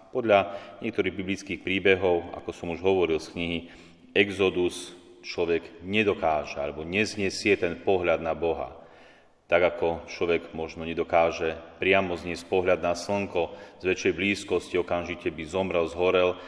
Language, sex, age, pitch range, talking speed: Slovak, male, 30-49, 85-100 Hz, 130 wpm